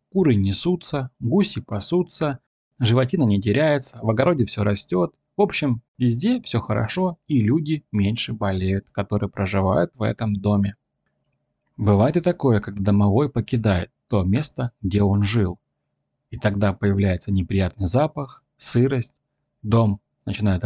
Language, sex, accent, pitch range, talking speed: Russian, male, native, 100-135 Hz, 130 wpm